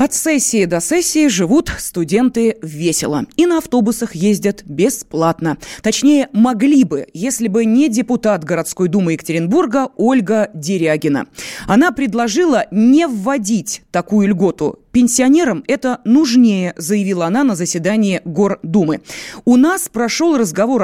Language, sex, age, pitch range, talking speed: Russian, female, 20-39, 180-260 Hz, 120 wpm